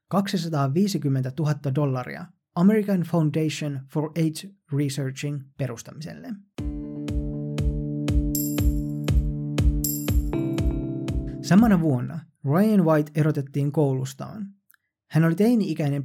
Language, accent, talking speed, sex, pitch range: Finnish, native, 65 wpm, male, 140-185 Hz